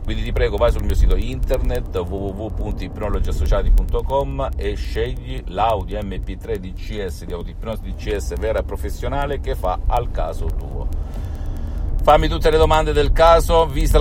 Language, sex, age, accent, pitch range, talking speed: Italian, male, 50-69, native, 85-140 Hz, 135 wpm